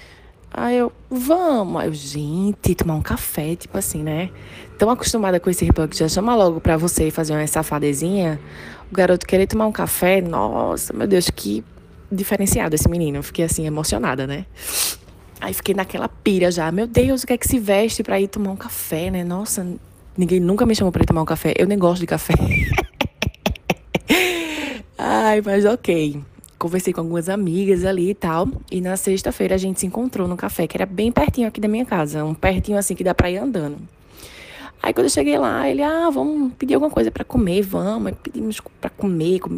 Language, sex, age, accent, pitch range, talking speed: Portuguese, female, 20-39, Brazilian, 165-210 Hz, 195 wpm